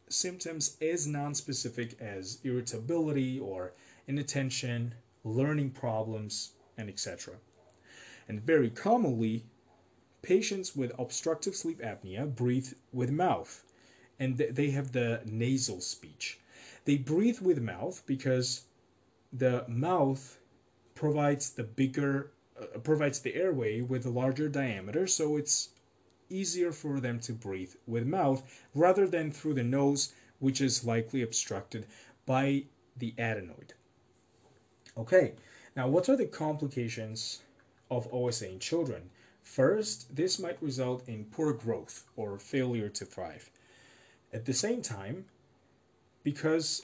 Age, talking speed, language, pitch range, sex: 30-49, 120 wpm, English, 115-145 Hz, male